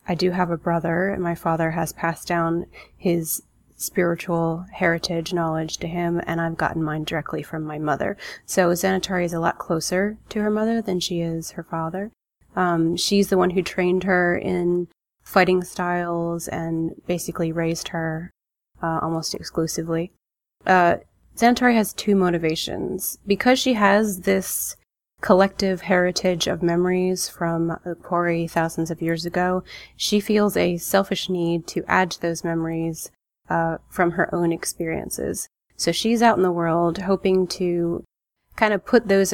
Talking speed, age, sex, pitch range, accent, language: 155 wpm, 20-39, female, 165-185 Hz, American, English